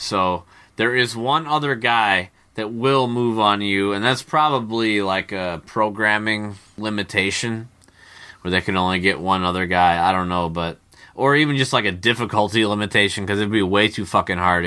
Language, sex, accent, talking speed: English, male, American, 185 wpm